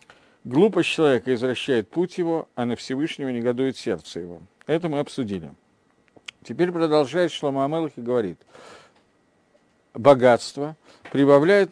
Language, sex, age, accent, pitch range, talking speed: Russian, male, 50-69, native, 115-155 Hz, 110 wpm